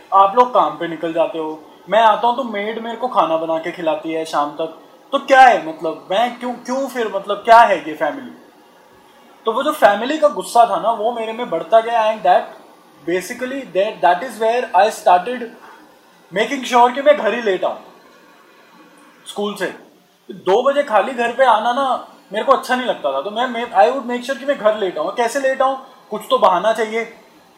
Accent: Indian